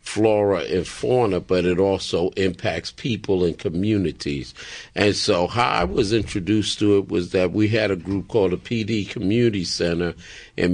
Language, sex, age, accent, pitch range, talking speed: English, male, 50-69, American, 90-105 Hz, 170 wpm